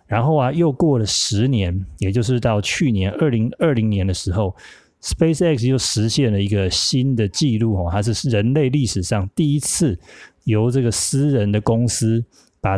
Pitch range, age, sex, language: 100-125 Hz, 20-39, male, Chinese